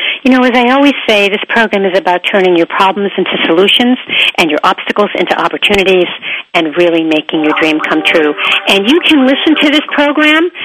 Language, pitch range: English, 175-245 Hz